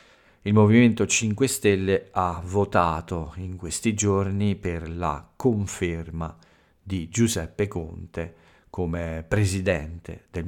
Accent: native